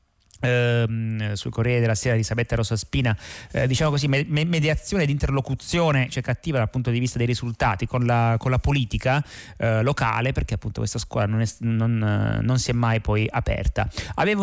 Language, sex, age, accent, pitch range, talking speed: Italian, male, 30-49, native, 115-145 Hz, 190 wpm